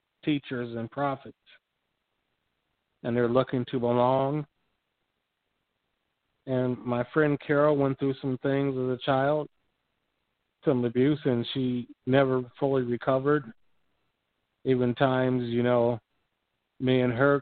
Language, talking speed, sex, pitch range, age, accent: English, 115 wpm, male, 120-135 Hz, 50-69, American